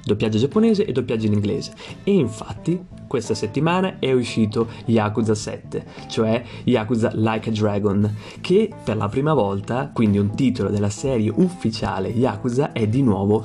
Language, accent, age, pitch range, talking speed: Italian, native, 30-49, 110-135 Hz, 150 wpm